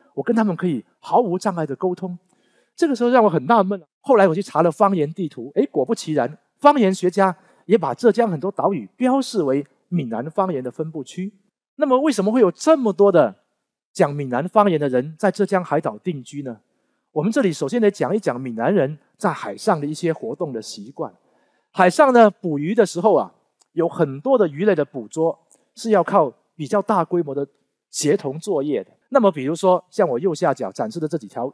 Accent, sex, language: native, male, Chinese